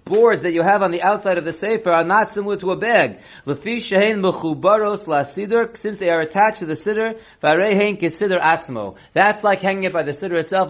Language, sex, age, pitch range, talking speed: English, male, 30-49, 160-200 Hz, 185 wpm